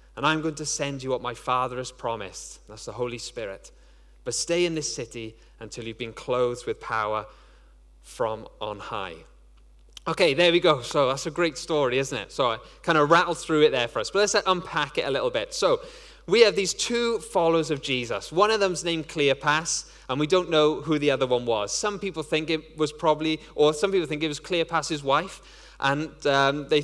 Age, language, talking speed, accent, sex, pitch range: 10-29, English, 215 wpm, British, male, 140-190 Hz